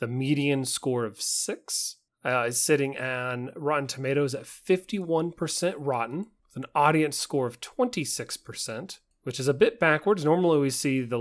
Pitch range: 125-155 Hz